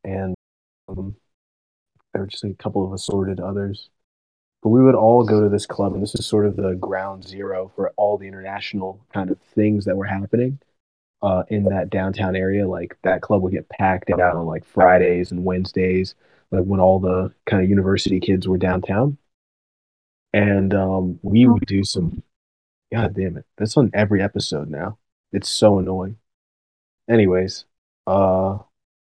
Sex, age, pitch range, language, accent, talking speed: male, 30-49, 95-105 Hz, English, American, 170 wpm